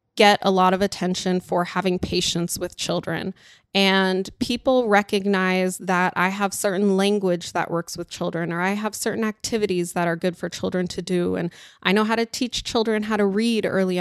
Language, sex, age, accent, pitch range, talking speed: English, female, 20-39, American, 180-205 Hz, 195 wpm